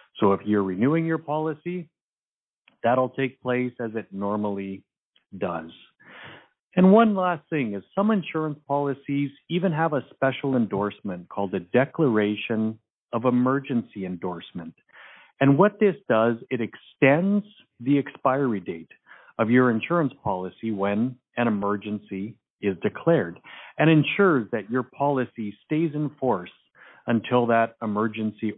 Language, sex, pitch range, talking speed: English, male, 110-150 Hz, 130 wpm